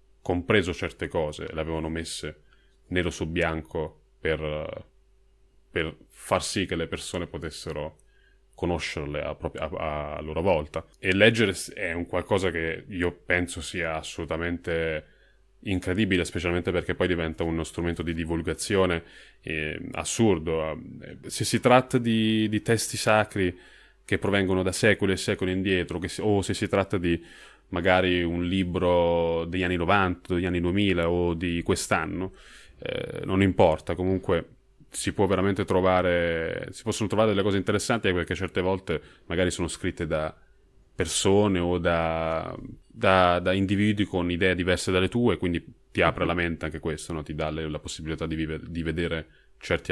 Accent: native